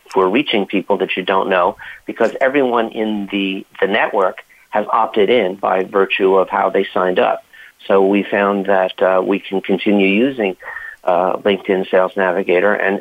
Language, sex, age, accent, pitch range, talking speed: English, male, 50-69, American, 95-110 Hz, 170 wpm